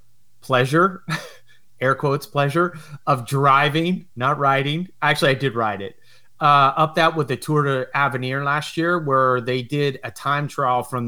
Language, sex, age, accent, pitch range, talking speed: English, male, 30-49, American, 120-140 Hz, 160 wpm